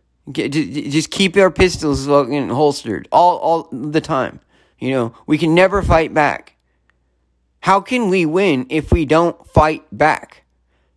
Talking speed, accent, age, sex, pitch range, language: 135 wpm, American, 30-49, male, 120-180 Hz, English